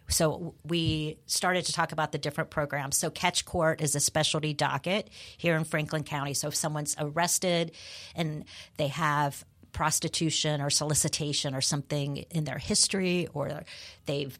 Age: 40-59